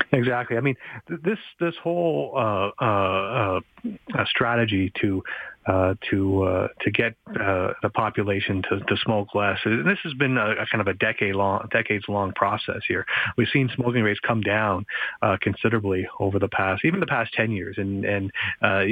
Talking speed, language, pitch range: 180 wpm, English, 95-115 Hz